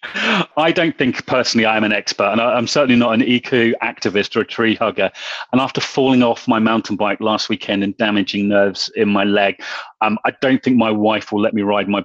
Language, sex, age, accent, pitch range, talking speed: English, male, 30-49, British, 105-120 Hz, 225 wpm